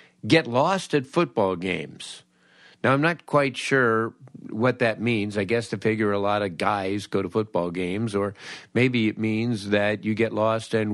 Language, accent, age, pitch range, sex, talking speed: English, American, 50-69, 95-130 Hz, male, 185 wpm